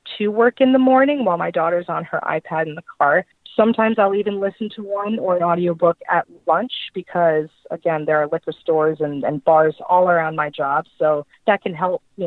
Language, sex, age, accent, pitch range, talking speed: English, female, 30-49, American, 165-220 Hz, 210 wpm